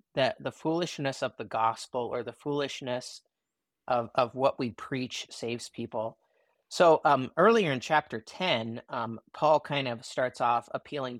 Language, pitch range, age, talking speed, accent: English, 120-140 Hz, 30-49, 155 wpm, American